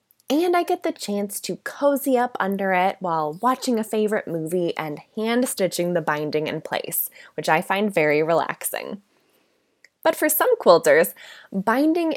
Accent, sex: American, female